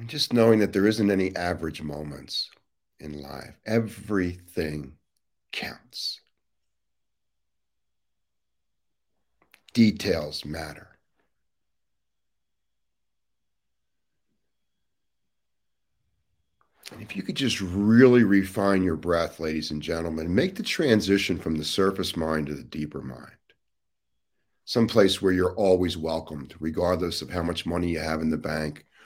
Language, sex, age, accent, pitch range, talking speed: English, male, 50-69, American, 75-100 Hz, 110 wpm